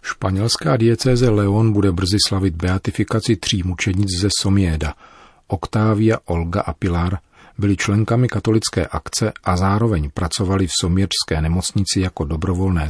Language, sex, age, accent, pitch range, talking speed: Czech, male, 40-59, native, 85-105 Hz, 125 wpm